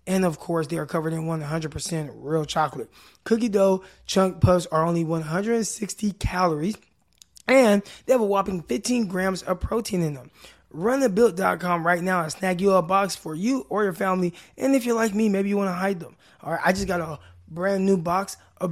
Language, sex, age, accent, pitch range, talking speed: English, male, 20-39, American, 165-205 Hz, 200 wpm